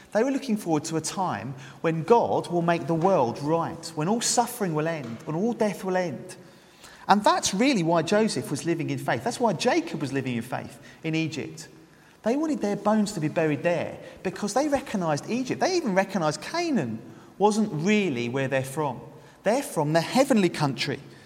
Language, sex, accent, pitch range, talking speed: English, male, British, 155-210 Hz, 190 wpm